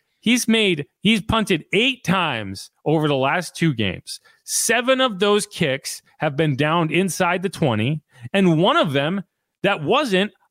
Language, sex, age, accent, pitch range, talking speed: English, male, 30-49, American, 175-250 Hz, 155 wpm